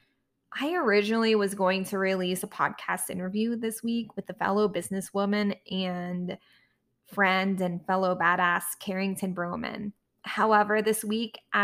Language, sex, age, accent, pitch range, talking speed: English, female, 20-39, American, 185-220 Hz, 130 wpm